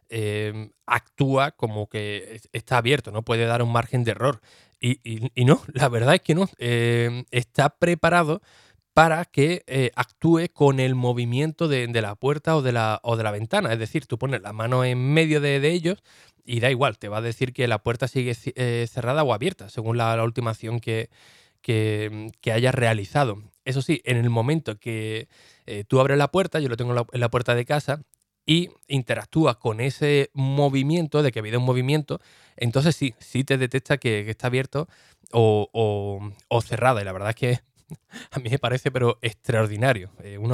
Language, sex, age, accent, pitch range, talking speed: Spanish, male, 20-39, Spanish, 115-140 Hz, 190 wpm